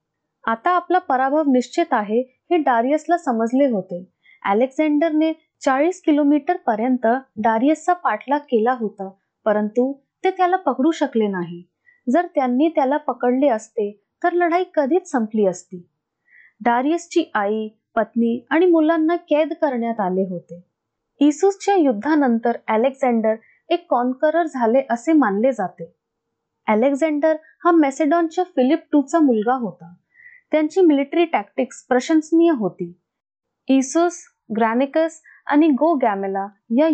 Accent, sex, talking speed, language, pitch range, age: native, female, 70 wpm, Marathi, 225-325 Hz, 20-39